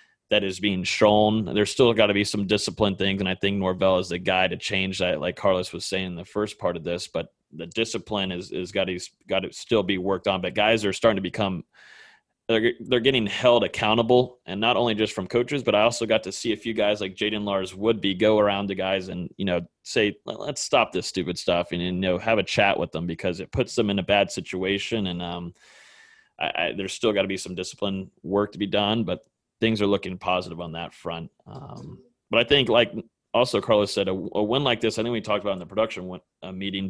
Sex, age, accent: male, 30-49, American